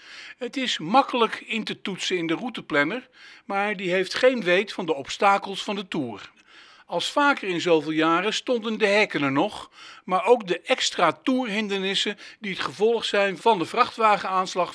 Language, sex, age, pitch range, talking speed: Dutch, male, 50-69, 175-230 Hz, 170 wpm